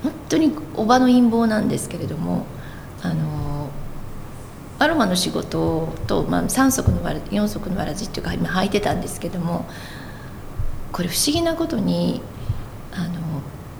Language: Japanese